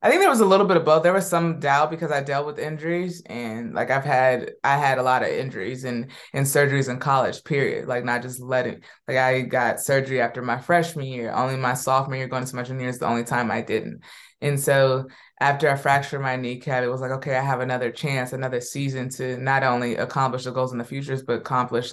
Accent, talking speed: American, 245 wpm